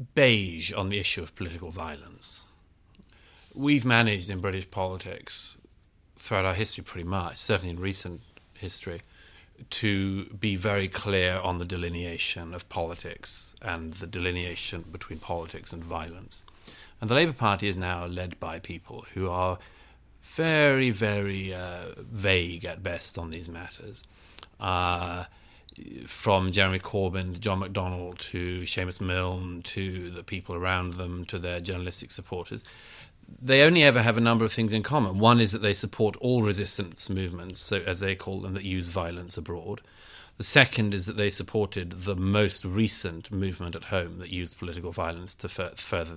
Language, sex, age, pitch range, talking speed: English, male, 40-59, 90-105 Hz, 160 wpm